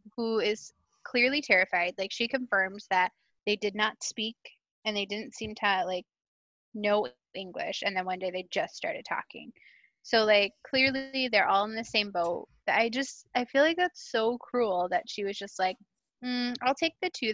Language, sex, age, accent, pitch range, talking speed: English, female, 10-29, American, 195-245 Hz, 190 wpm